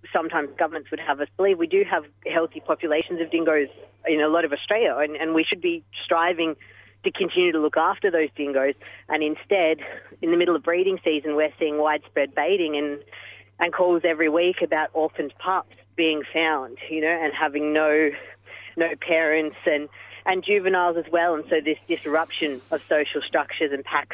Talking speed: 185 wpm